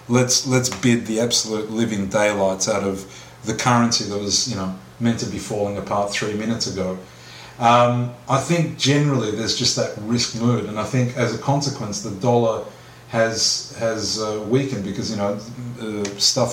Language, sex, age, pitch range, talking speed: English, male, 30-49, 105-125 Hz, 180 wpm